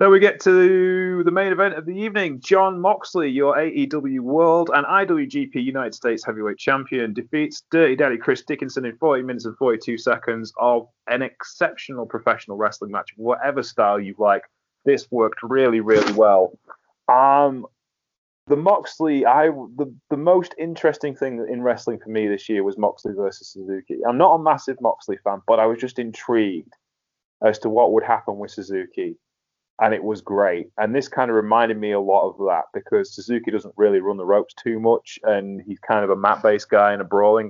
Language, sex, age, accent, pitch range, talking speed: English, male, 30-49, British, 110-165 Hz, 185 wpm